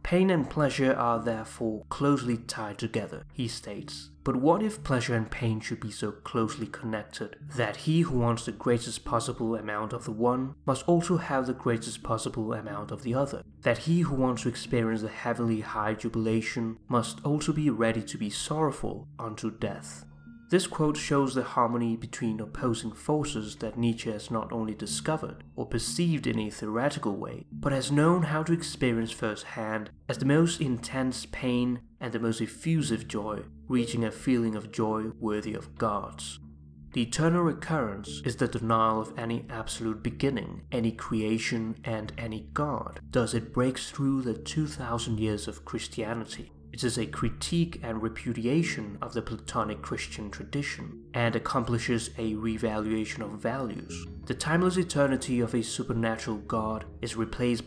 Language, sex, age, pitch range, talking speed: English, male, 20-39, 110-130 Hz, 160 wpm